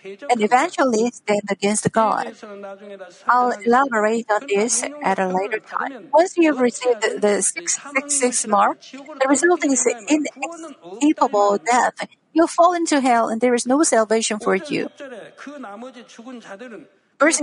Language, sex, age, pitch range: Korean, female, 50-69, 215-280 Hz